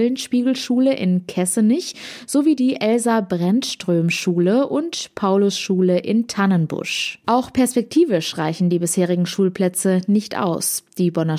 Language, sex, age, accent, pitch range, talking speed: German, female, 20-39, German, 185-245 Hz, 105 wpm